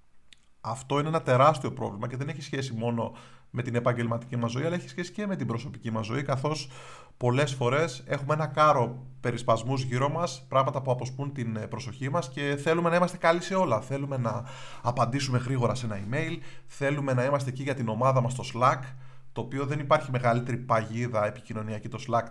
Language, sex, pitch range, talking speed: Greek, male, 120-145 Hz, 195 wpm